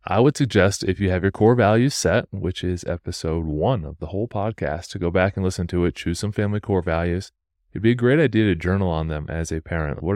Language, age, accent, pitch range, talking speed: English, 30-49, American, 85-100 Hz, 255 wpm